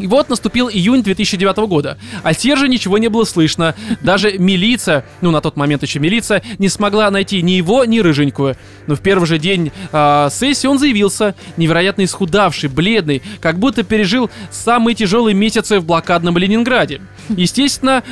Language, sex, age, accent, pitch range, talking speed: Russian, male, 20-39, native, 160-225 Hz, 160 wpm